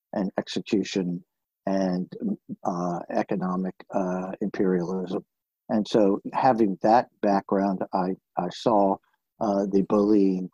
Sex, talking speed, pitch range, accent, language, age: male, 100 wpm, 90-100 Hz, American, English, 60-79